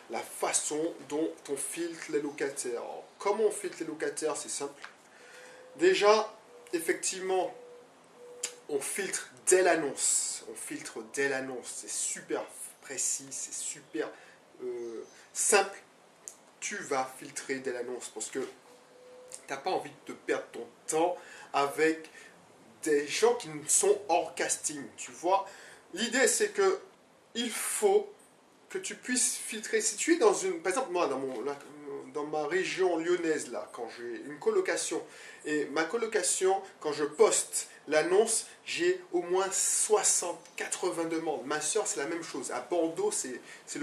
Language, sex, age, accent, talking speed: French, male, 20-39, French, 145 wpm